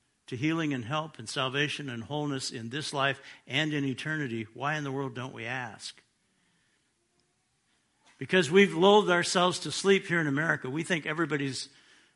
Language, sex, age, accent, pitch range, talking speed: English, male, 60-79, American, 130-165 Hz, 165 wpm